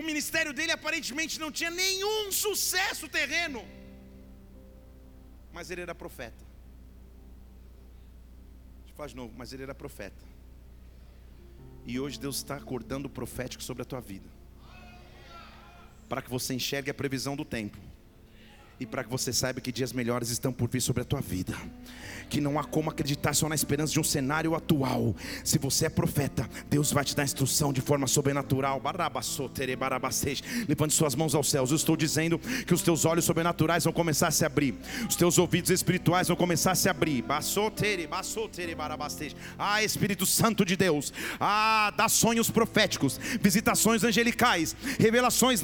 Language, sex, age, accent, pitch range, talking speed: Portuguese, male, 40-59, Brazilian, 125-205 Hz, 155 wpm